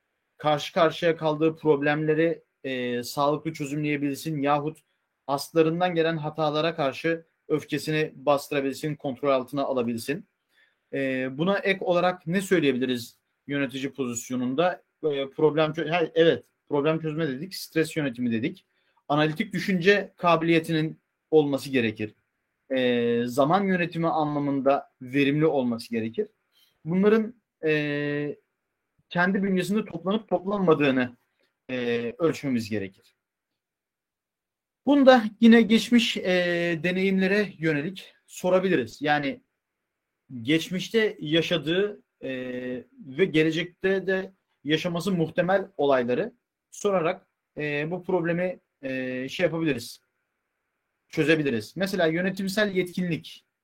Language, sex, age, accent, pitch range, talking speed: Turkish, male, 40-59, native, 140-180 Hz, 95 wpm